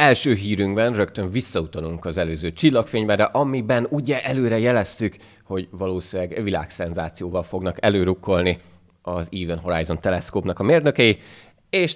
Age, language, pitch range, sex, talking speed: 30-49, Hungarian, 90-115 Hz, male, 115 wpm